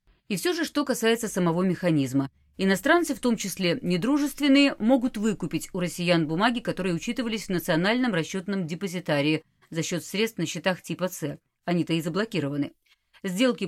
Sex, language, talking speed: female, Russian, 150 wpm